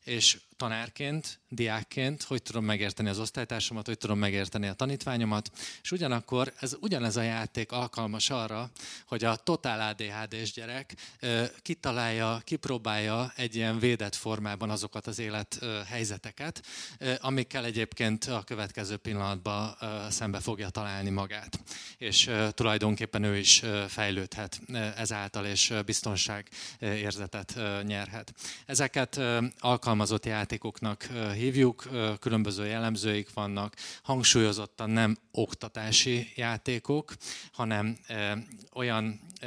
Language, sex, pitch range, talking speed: Hungarian, male, 105-120 Hz, 105 wpm